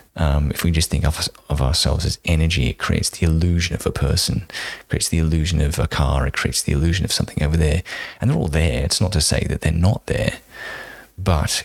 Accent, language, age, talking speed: British, English, 20-39, 230 wpm